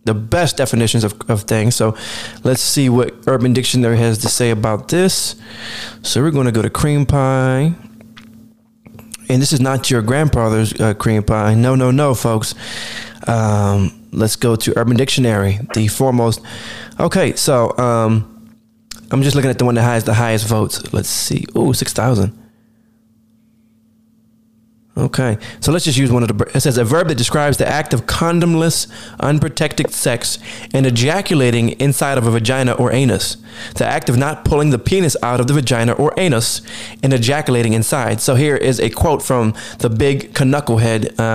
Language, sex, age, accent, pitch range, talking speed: English, male, 20-39, American, 110-140 Hz, 170 wpm